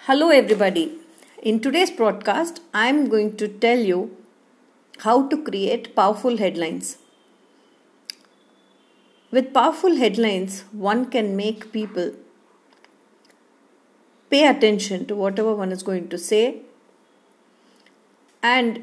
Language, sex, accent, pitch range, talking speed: English, female, Indian, 200-250 Hz, 100 wpm